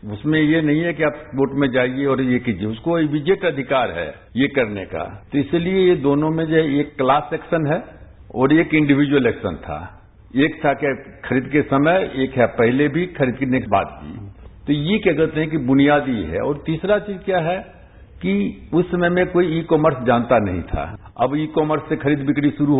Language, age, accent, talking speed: English, 60-79, Indian, 200 wpm